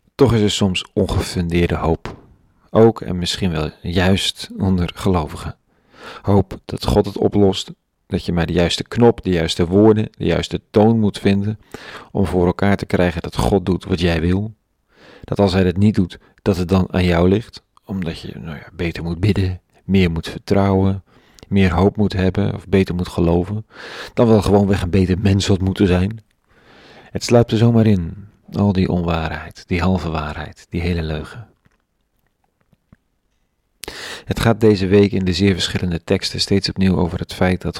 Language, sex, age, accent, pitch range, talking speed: Dutch, male, 40-59, Dutch, 85-100 Hz, 175 wpm